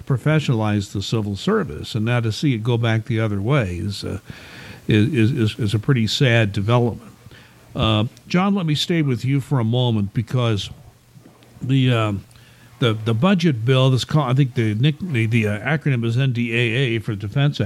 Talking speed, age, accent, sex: 180 wpm, 60-79, American, male